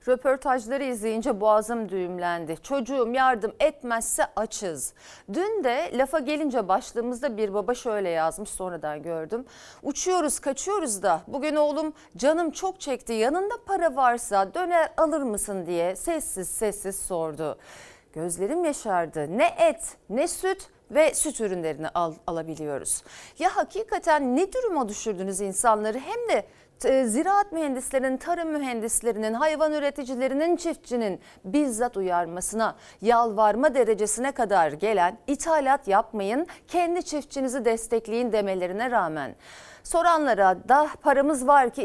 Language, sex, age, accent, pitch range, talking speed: Turkish, female, 40-59, native, 200-295 Hz, 115 wpm